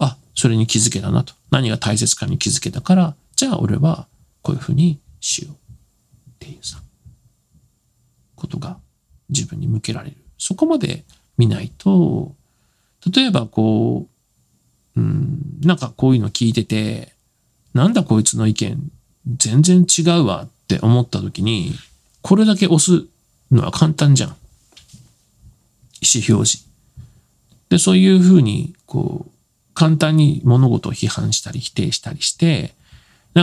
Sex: male